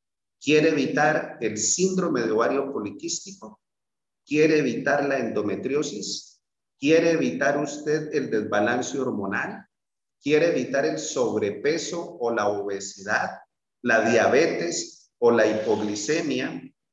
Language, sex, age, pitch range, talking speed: Spanish, male, 40-59, 110-155 Hz, 105 wpm